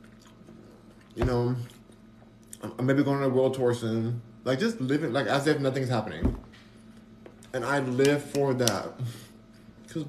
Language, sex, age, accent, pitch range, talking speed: English, male, 20-39, American, 110-155 Hz, 145 wpm